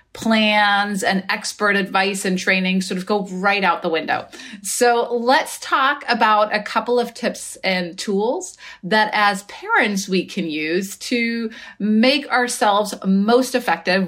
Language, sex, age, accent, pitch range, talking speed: English, female, 30-49, American, 190-245 Hz, 145 wpm